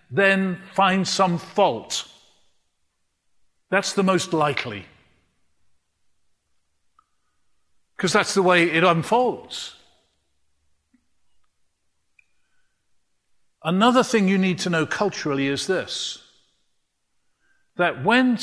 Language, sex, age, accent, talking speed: English, male, 50-69, British, 80 wpm